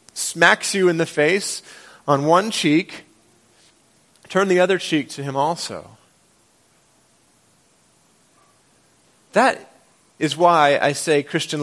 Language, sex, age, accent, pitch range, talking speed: English, male, 30-49, American, 115-170 Hz, 110 wpm